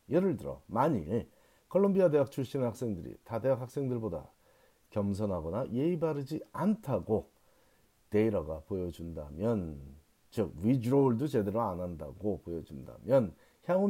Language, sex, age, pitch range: Korean, male, 40-59, 95-145 Hz